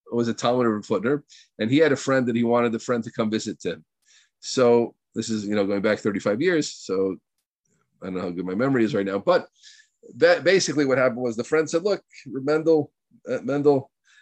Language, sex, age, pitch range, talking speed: English, male, 40-59, 105-150 Hz, 230 wpm